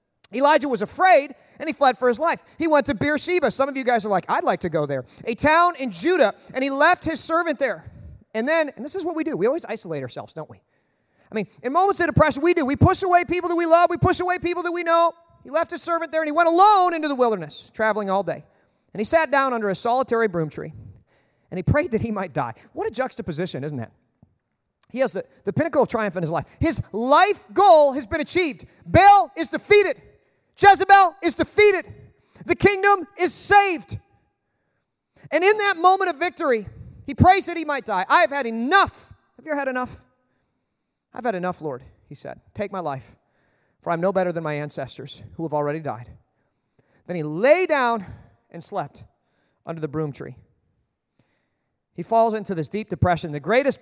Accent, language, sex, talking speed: American, English, male, 215 wpm